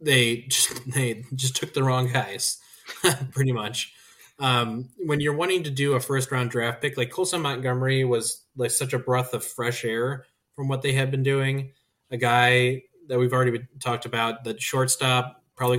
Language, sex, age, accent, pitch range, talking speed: English, male, 20-39, American, 115-135 Hz, 180 wpm